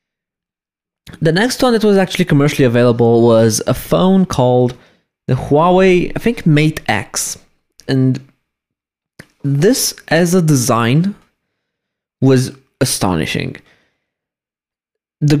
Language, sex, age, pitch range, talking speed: English, male, 20-39, 125-165 Hz, 100 wpm